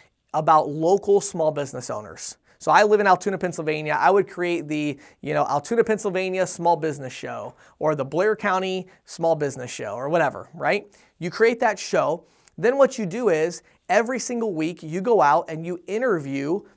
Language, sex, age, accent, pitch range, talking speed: English, male, 30-49, American, 165-215 Hz, 180 wpm